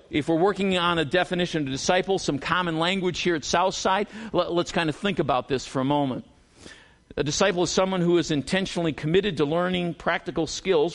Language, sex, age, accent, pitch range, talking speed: English, male, 50-69, American, 160-200 Hz, 195 wpm